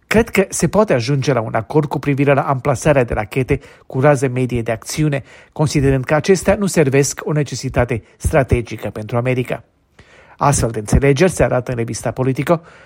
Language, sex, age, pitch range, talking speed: Romanian, male, 40-59, 125-155 Hz, 175 wpm